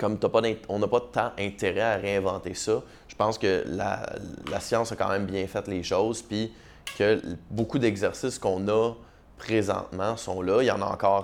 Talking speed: 210 wpm